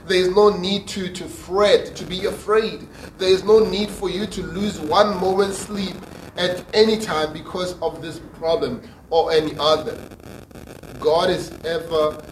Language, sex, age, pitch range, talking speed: English, male, 30-49, 145-180 Hz, 165 wpm